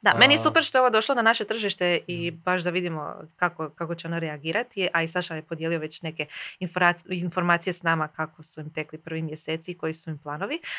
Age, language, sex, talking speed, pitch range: 20-39, Croatian, female, 230 wpm, 165-195 Hz